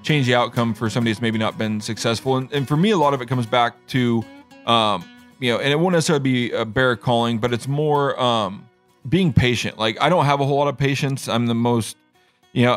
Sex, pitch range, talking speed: male, 115-135 Hz, 245 wpm